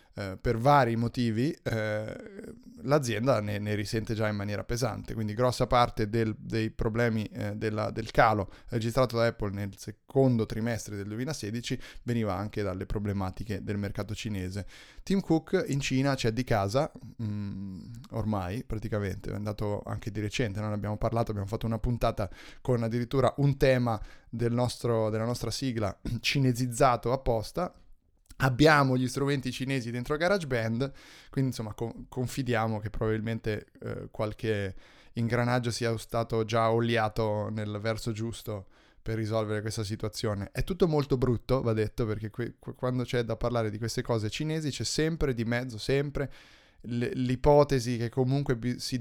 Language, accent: Italian, native